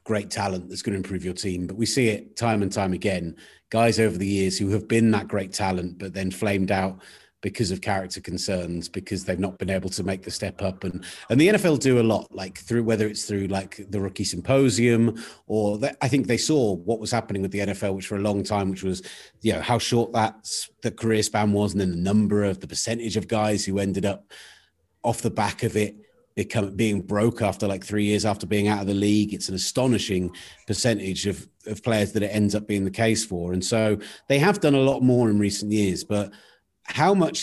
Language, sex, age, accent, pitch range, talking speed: English, male, 30-49, British, 95-115 Hz, 235 wpm